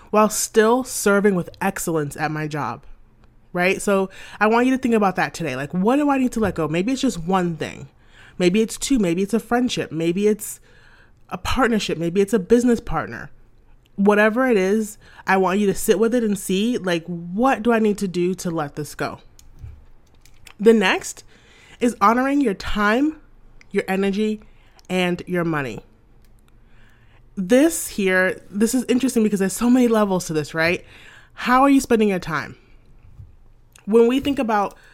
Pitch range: 170-225 Hz